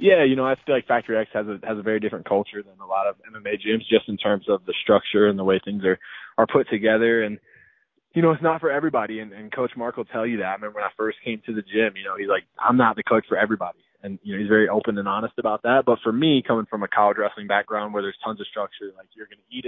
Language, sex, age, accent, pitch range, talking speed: English, male, 20-39, American, 105-120 Hz, 300 wpm